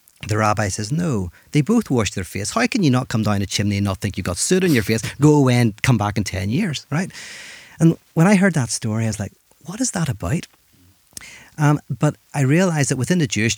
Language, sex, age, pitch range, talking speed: English, male, 40-59, 100-140 Hz, 250 wpm